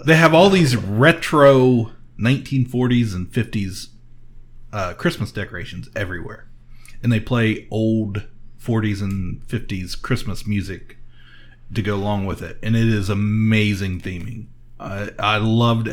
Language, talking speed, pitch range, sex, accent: English, 130 wpm, 110-140 Hz, male, American